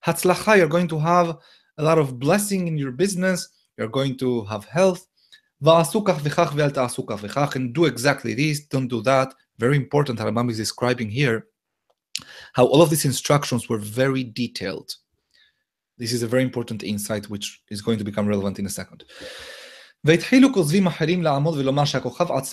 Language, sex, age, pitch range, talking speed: English, male, 30-49, 125-170 Hz, 130 wpm